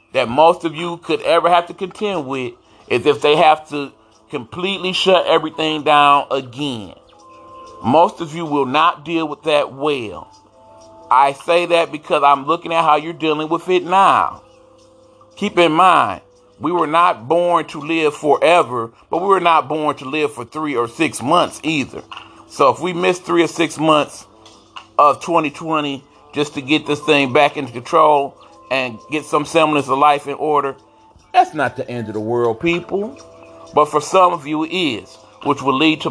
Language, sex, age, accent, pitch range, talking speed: English, male, 40-59, American, 135-170 Hz, 185 wpm